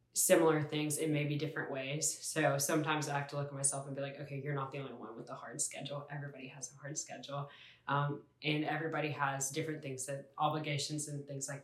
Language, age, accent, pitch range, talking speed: English, 10-29, American, 140-155 Hz, 220 wpm